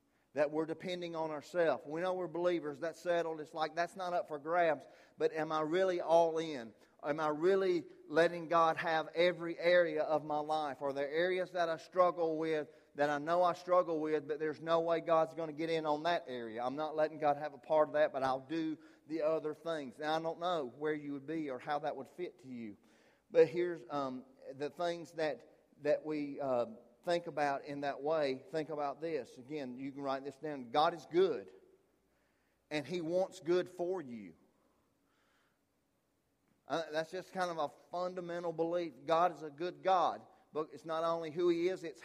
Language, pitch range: English, 150-170 Hz